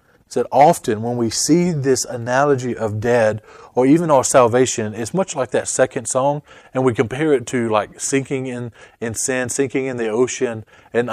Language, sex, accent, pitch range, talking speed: English, male, American, 115-145 Hz, 185 wpm